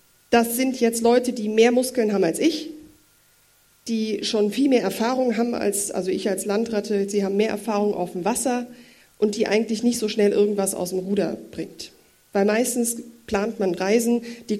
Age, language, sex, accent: 40-59, German, female, German